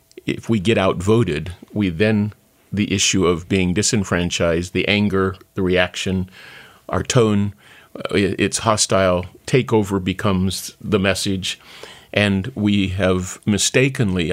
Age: 50-69